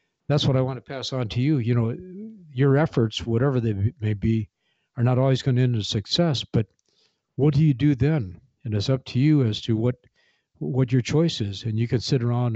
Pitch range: 110-130 Hz